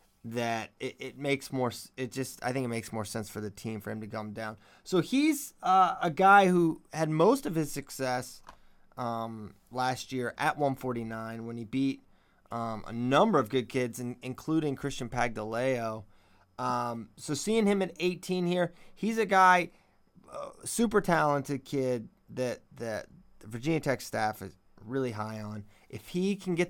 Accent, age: American, 30-49